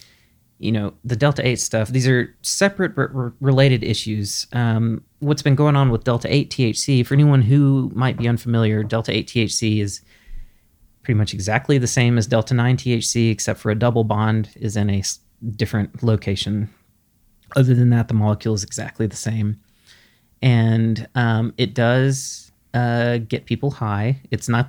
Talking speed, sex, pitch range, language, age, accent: 170 wpm, male, 105-125 Hz, English, 30-49, American